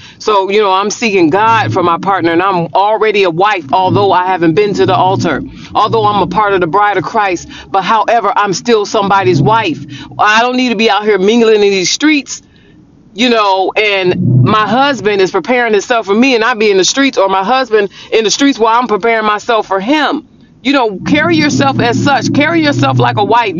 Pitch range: 195-275 Hz